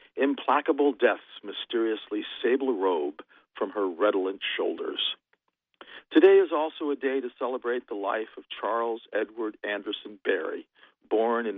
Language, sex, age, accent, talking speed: English, male, 50-69, American, 130 wpm